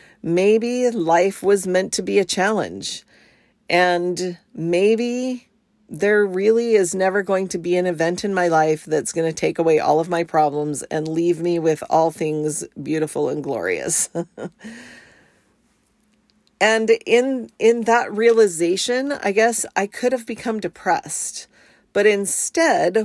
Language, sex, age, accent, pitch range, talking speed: English, female, 40-59, American, 175-225 Hz, 140 wpm